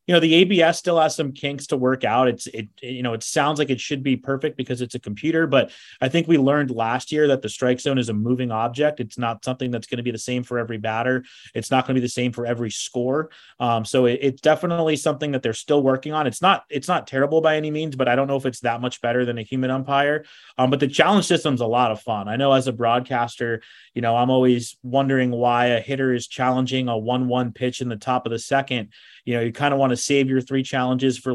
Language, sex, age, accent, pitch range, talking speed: English, male, 30-49, American, 120-140 Hz, 270 wpm